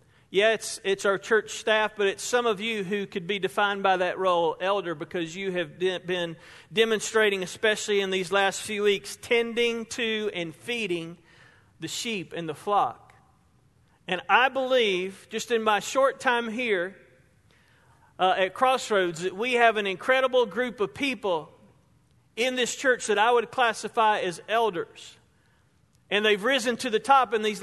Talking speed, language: 165 wpm, English